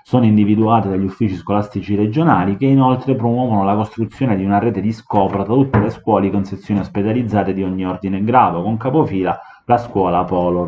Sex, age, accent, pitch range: male, 30-49, native, 95-120 Hz